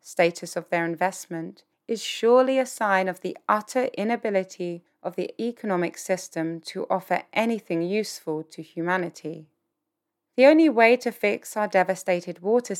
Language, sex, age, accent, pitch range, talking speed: English, female, 30-49, British, 170-220 Hz, 140 wpm